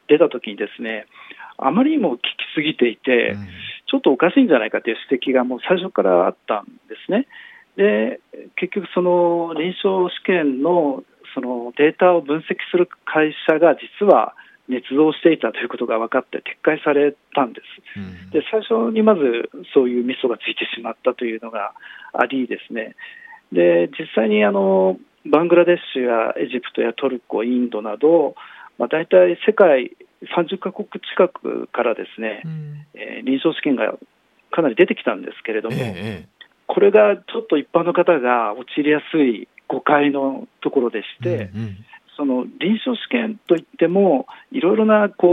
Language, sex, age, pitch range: Japanese, male, 40-59, 125-205 Hz